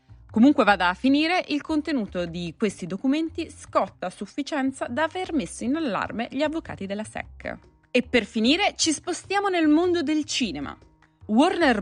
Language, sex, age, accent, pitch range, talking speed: Italian, female, 20-39, native, 185-275 Hz, 155 wpm